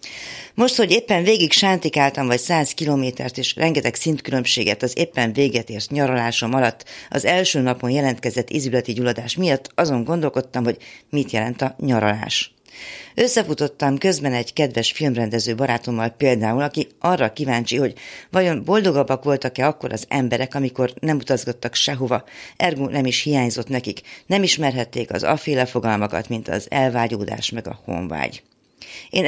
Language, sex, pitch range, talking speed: Hungarian, female, 115-145 Hz, 140 wpm